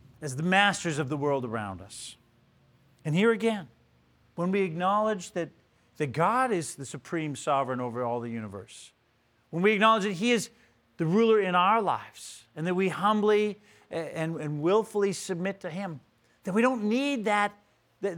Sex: male